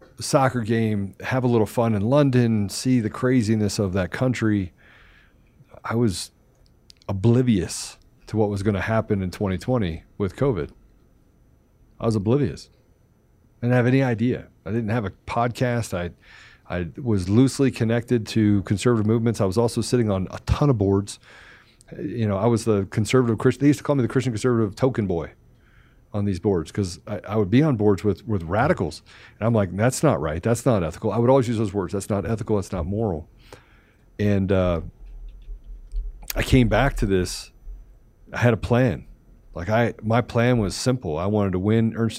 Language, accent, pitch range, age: English, American, 100-120 Hz, 40-59